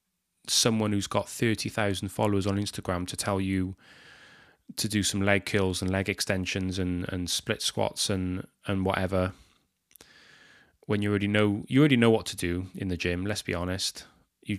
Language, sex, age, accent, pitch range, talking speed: English, male, 20-39, British, 95-105 Hz, 175 wpm